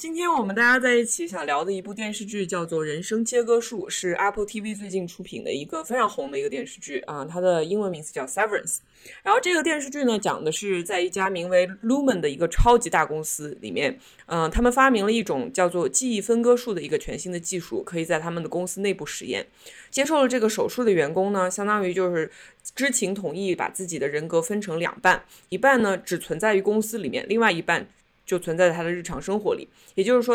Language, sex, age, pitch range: Chinese, female, 20-39, 175-235 Hz